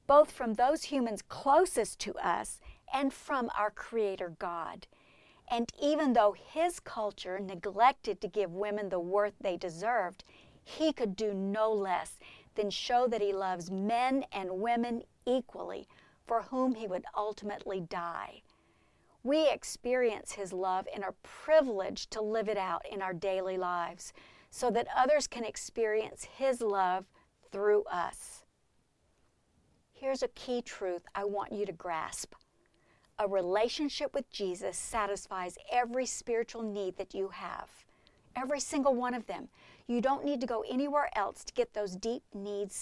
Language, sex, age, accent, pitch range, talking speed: English, female, 50-69, American, 200-255 Hz, 150 wpm